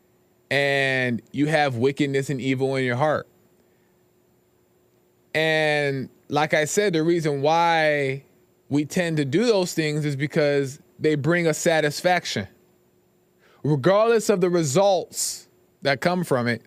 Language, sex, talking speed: English, male, 130 wpm